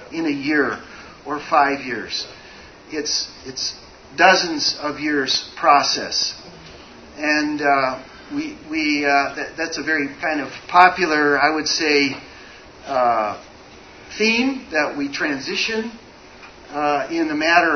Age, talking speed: 40-59, 120 wpm